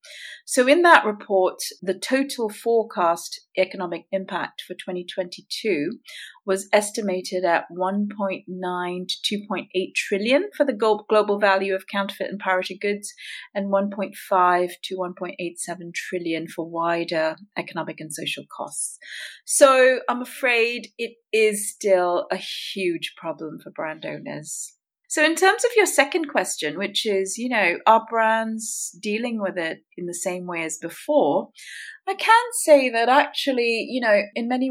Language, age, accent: English, 40-59, British